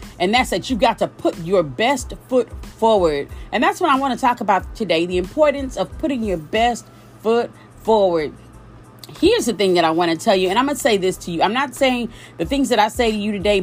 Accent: American